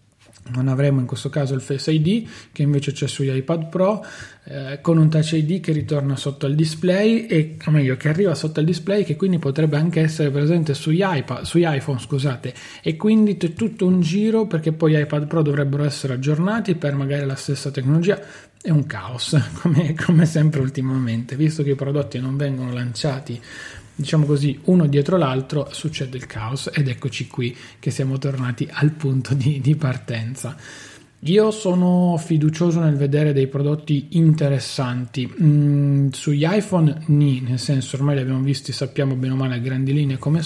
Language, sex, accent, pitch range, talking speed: Italian, male, native, 135-160 Hz, 175 wpm